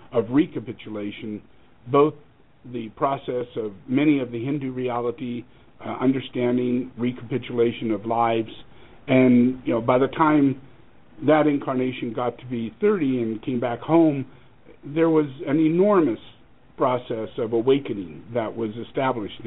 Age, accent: 50-69, American